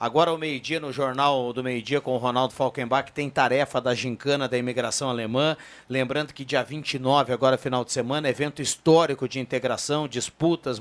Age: 50-69